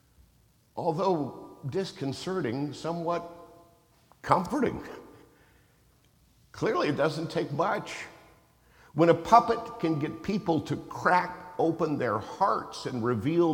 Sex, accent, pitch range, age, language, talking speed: male, American, 105-150 Hz, 50-69, English, 95 wpm